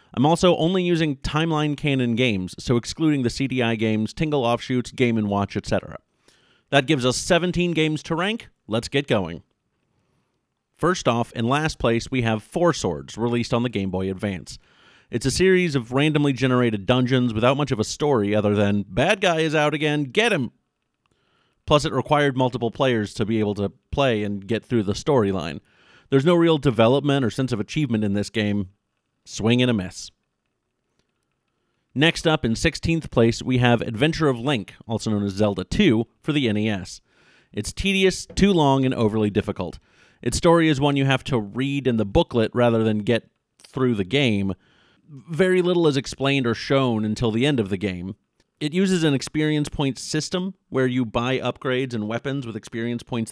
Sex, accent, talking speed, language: male, American, 180 wpm, English